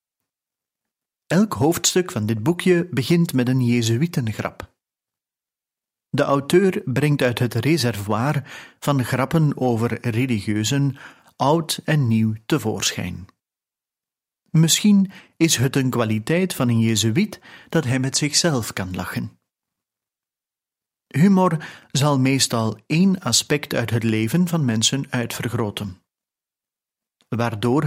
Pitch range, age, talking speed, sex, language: 115-150 Hz, 40-59, 105 wpm, male, Dutch